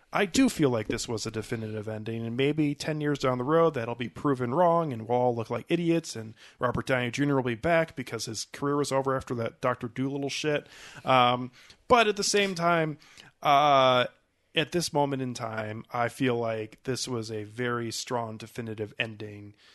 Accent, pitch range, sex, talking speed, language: American, 110-135 Hz, male, 200 wpm, English